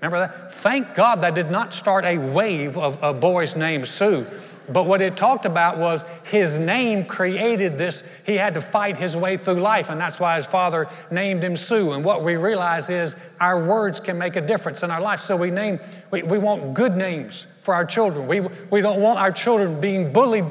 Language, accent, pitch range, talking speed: English, American, 155-195 Hz, 215 wpm